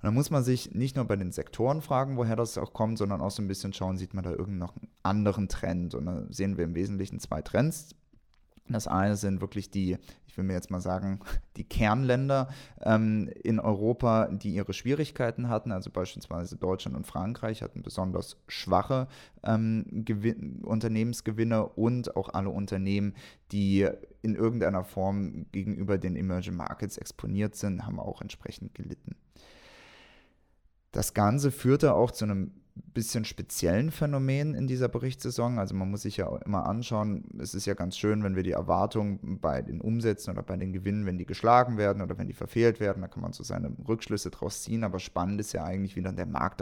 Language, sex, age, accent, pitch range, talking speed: English, male, 20-39, German, 95-115 Hz, 190 wpm